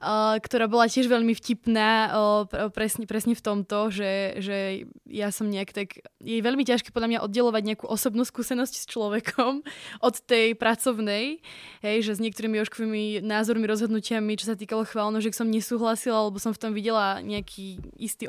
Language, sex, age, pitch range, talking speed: Slovak, female, 20-39, 200-225 Hz, 165 wpm